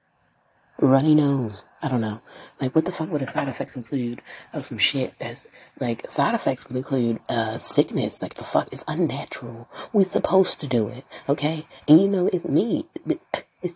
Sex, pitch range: female, 125-180 Hz